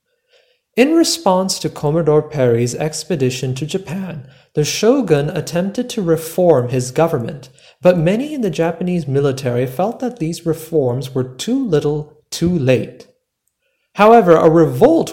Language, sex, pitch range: English, male, 135-195 Hz